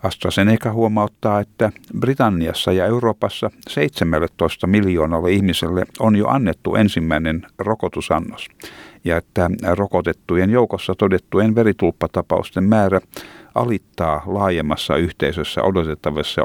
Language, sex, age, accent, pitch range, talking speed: Finnish, male, 60-79, native, 85-110 Hz, 90 wpm